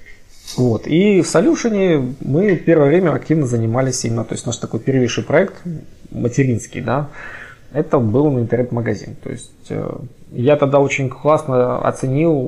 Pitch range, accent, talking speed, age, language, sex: 115-145 Hz, native, 135 wpm, 20-39, Ukrainian, male